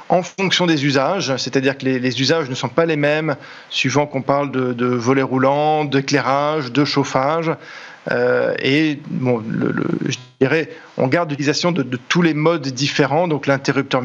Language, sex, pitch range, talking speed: French, male, 135-165 Hz, 180 wpm